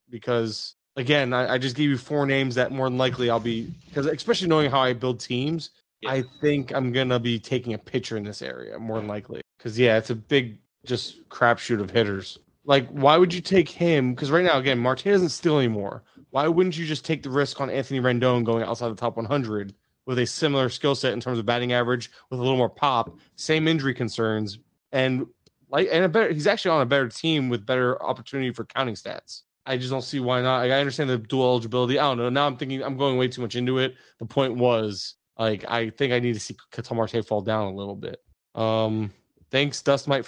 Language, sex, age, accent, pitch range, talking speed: English, male, 20-39, American, 120-140 Hz, 230 wpm